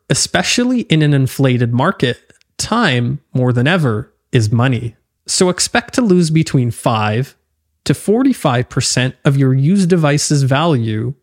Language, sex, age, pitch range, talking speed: English, male, 20-39, 120-180 Hz, 130 wpm